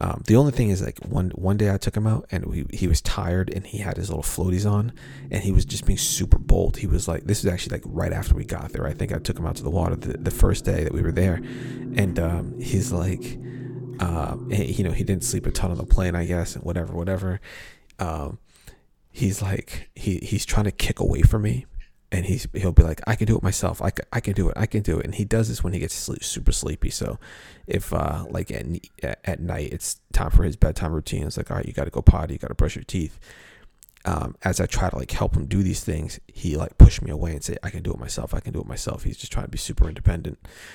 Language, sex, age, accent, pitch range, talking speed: English, male, 30-49, American, 85-105 Hz, 270 wpm